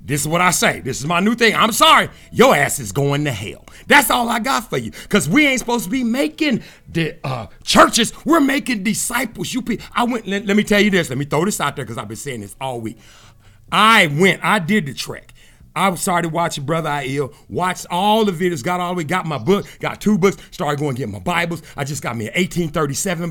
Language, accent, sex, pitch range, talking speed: English, American, male, 125-205 Hz, 250 wpm